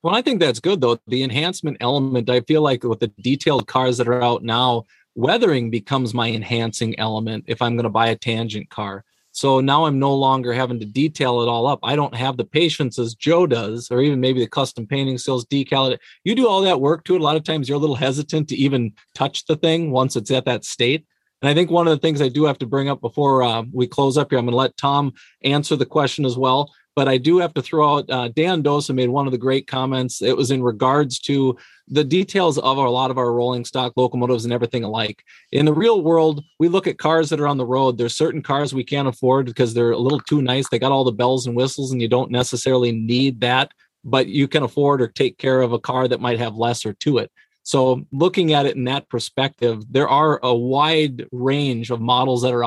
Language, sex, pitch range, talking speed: English, male, 120-145 Hz, 250 wpm